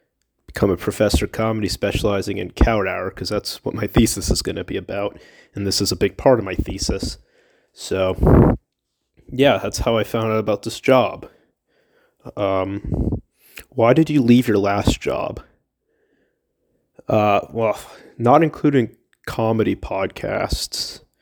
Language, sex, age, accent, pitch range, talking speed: English, male, 20-39, American, 100-115 Hz, 145 wpm